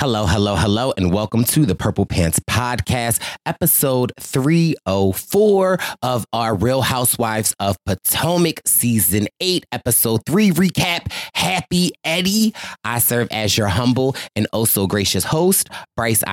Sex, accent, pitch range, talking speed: male, American, 105-145 Hz, 130 wpm